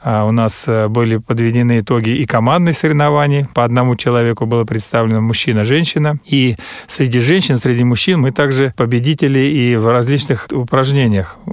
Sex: male